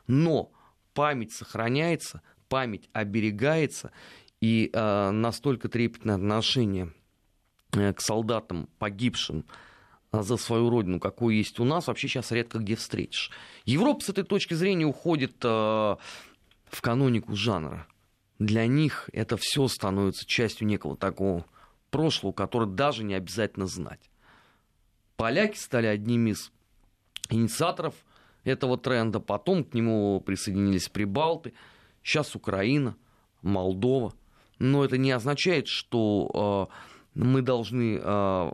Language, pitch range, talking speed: Russian, 100-130 Hz, 115 wpm